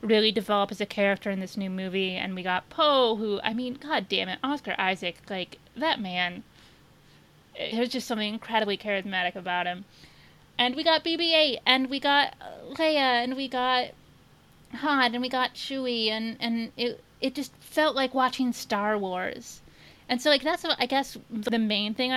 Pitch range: 205-255 Hz